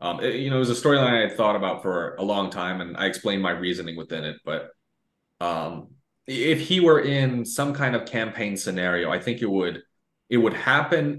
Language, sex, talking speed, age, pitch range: English, male, 215 wpm, 30-49, 95-125 Hz